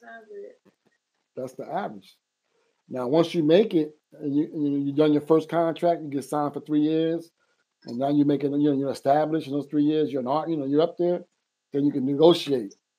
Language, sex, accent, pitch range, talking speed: English, male, American, 140-175 Hz, 210 wpm